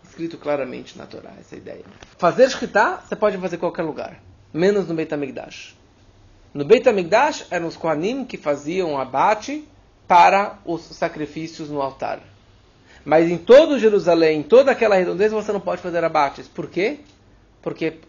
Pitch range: 130-185 Hz